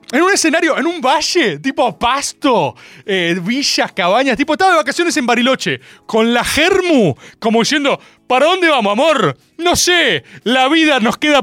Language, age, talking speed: Spanish, 30-49, 170 wpm